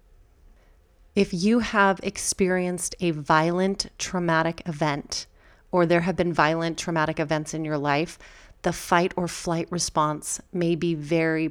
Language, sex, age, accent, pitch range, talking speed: English, female, 30-49, American, 155-185 Hz, 135 wpm